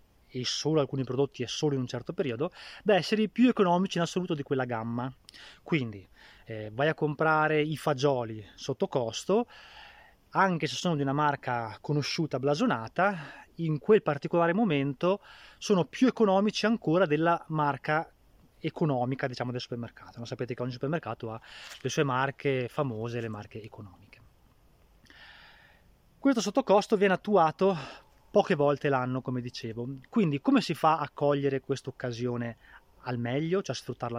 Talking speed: 145 wpm